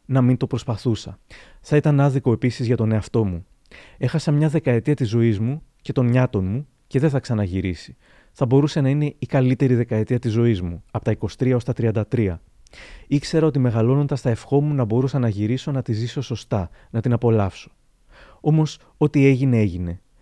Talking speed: 185 wpm